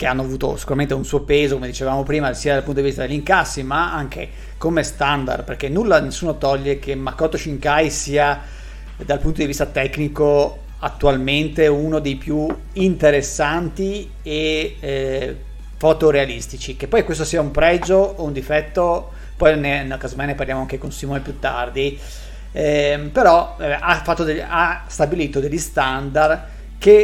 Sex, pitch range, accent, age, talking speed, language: male, 140-155 Hz, native, 40-59, 150 wpm, Italian